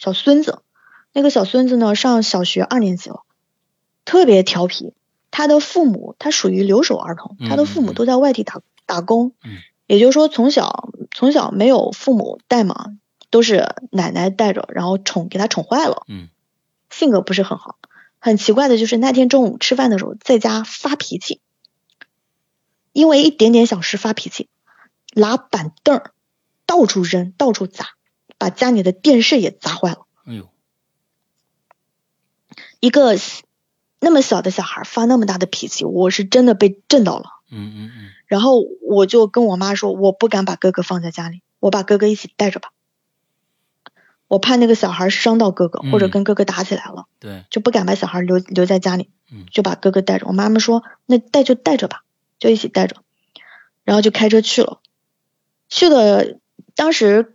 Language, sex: Chinese, female